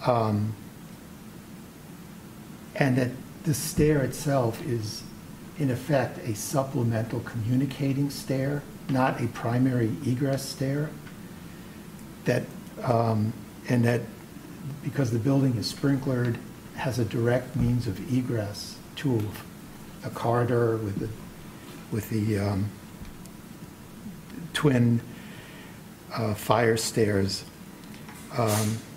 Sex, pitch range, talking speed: male, 110-135 Hz, 95 wpm